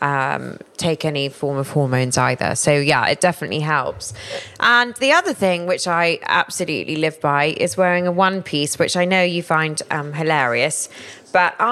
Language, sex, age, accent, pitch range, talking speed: English, female, 20-39, British, 150-190 Hz, 175 wpm